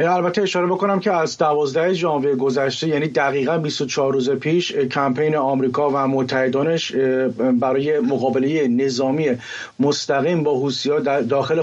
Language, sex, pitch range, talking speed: English, male, 140-175 Hz, 130 wpm